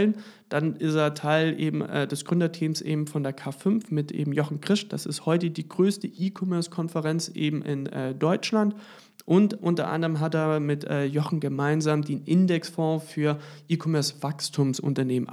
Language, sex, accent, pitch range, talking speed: German, male, German, 150-175 Hz, 155 wpm